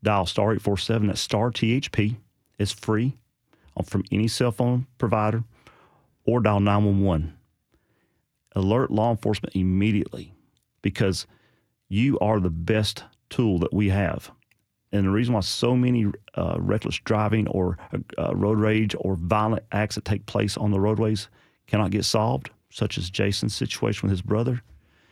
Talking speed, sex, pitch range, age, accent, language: 145 wpm, male, 95-110 Hz, 40-59, American, English